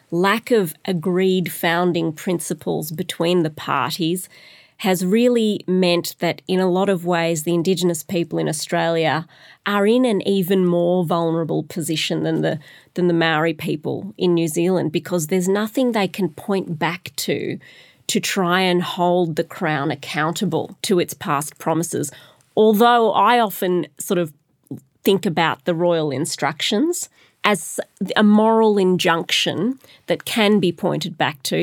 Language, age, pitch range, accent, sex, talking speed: English, 30-49, 165-190 Hz, Australian, female, 145 wpm